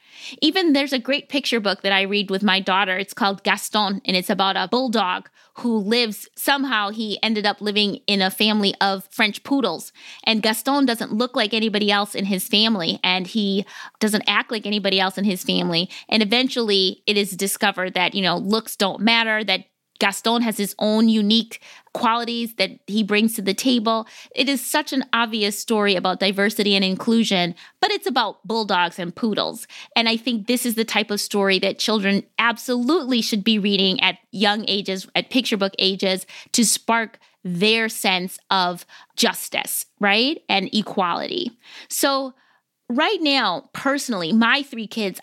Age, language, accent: 20-39, English, American